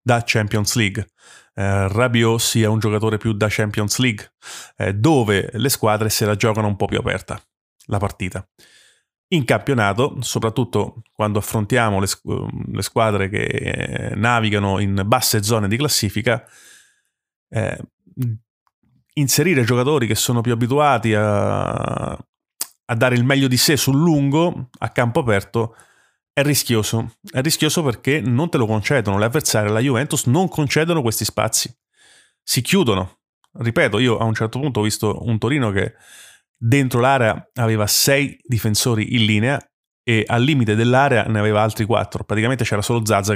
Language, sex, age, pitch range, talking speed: Italian, male, 30-49, 105-130 Hz, 150 wpm